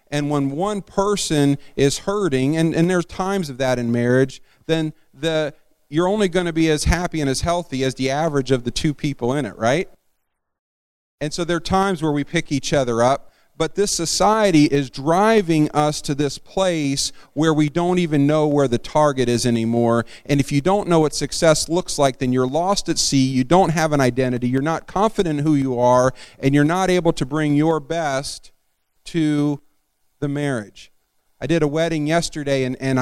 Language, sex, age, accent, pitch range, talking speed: English, male, 40-59, American, 120-160 Hz, 200 wpm